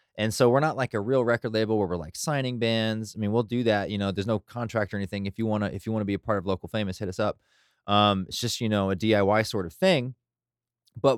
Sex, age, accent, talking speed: male, 20-39, American, 290 wpm